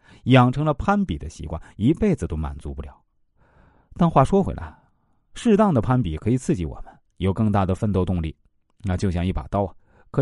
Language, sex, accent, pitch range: Chinese, male, native, 90-125 Hz